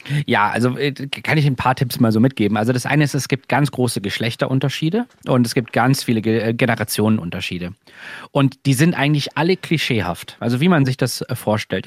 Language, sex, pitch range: German, male, 120-145 Hz